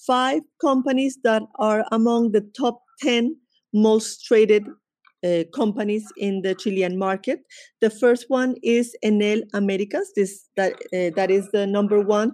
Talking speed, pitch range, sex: 145 wpm, 200-240 Hz, female